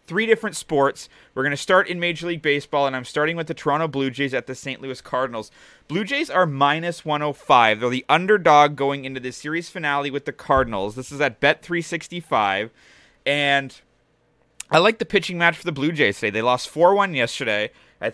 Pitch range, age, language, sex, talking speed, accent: 125-160 Hz, 30-49, English, male, 200 wpm, American